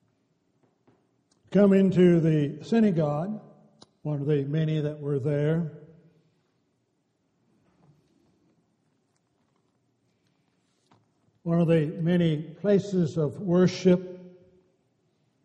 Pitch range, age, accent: 150-180 Hz, 60-79, American